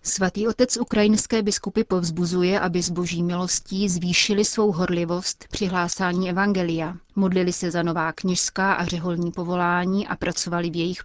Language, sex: Czech, female